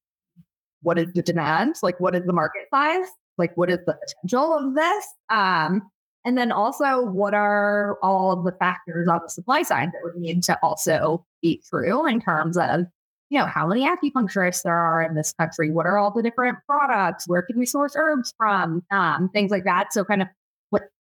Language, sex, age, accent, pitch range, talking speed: English, female, 20-39, American, 170-215 Hz, 205 wpm